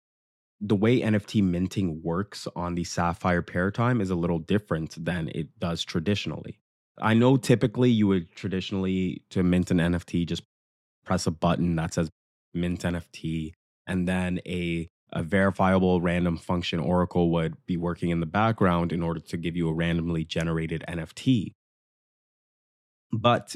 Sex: male